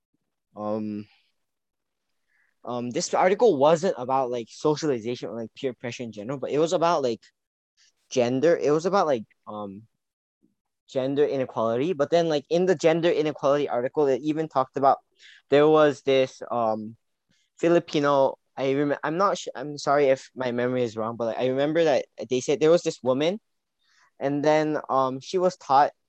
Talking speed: 170 wpm